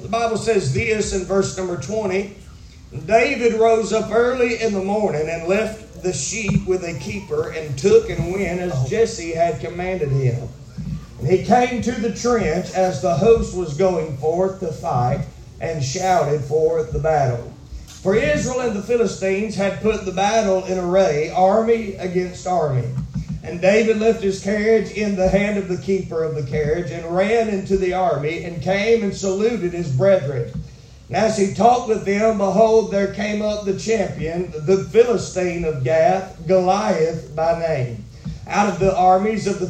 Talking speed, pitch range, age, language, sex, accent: 170 wpm, 160-210 Hz, 40-59, English, male, American